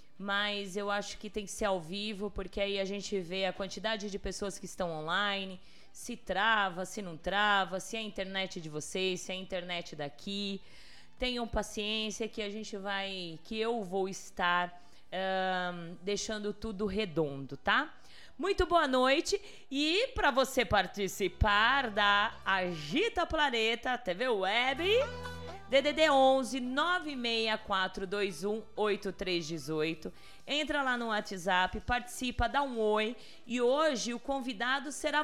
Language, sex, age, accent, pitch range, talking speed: Portuguese, female, 20-39, Brazilian, 190-260 Hz, 135 wpm